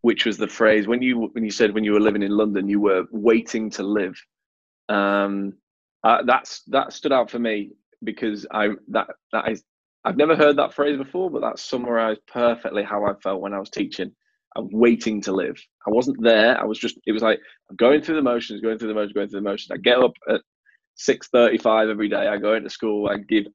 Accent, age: British, 20-39